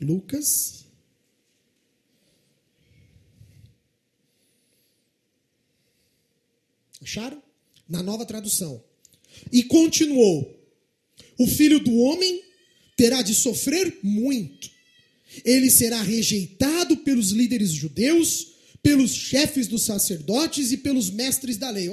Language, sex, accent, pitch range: English, male, Brazilian, 180-255 Hz